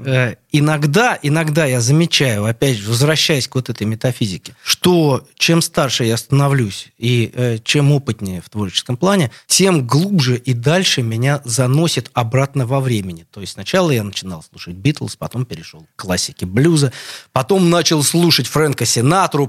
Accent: native